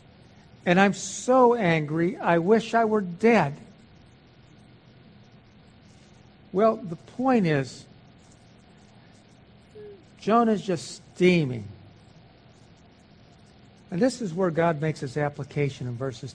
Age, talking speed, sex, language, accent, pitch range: 60-79, 95 wpm, male, English, American, 145-195 Hz